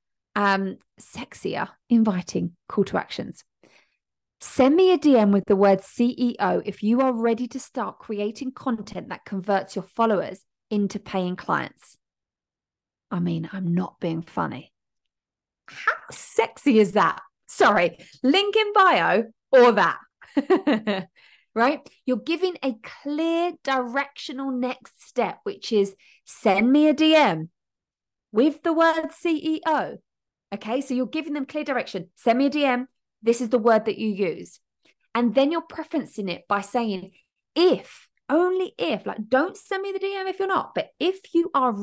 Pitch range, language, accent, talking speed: 205-305 Hz, English, British, 150 wpm